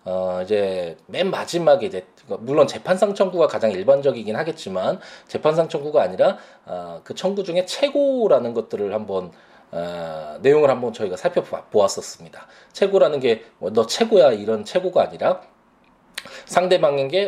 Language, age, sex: Korean, 20-39, male